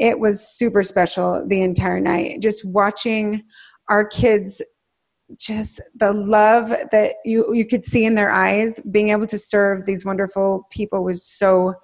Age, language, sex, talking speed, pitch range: 30-49, English, female, 155 wpm, 195-230 Hz